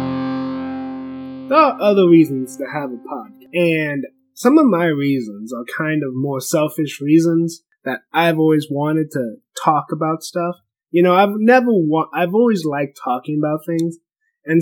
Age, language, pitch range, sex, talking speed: 20-39, English, 135-190 Hz, male, 160 wpm